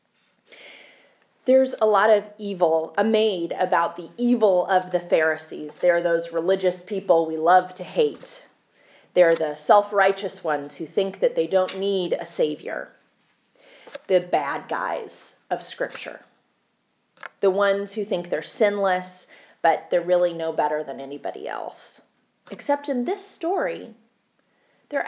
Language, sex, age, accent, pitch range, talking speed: English, female, 30-49, American, 180-235 Hz, 135 wpm